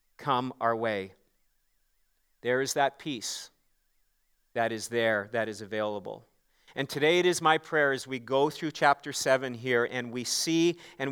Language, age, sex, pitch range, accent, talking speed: English, 40-59, male, 135-170 Hz, American, 160 wpm